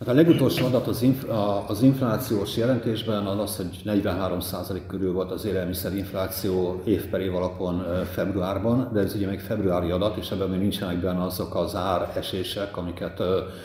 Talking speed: 150 wpm